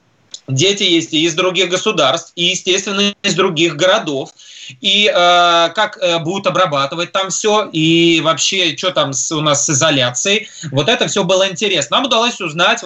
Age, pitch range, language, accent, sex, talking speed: 20-39, 150-185 Hz, Russian, native, male, 165 wpm